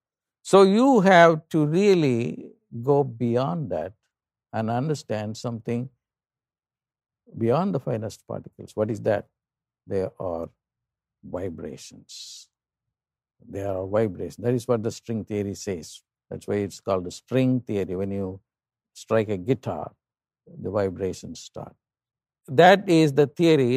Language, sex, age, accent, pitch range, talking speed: English, male, 50-69, Indian, 110-155 Hz, 125 wpm